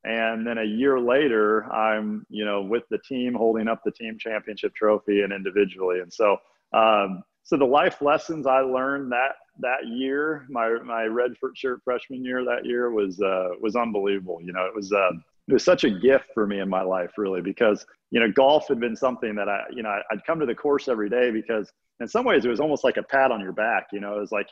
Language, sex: English, male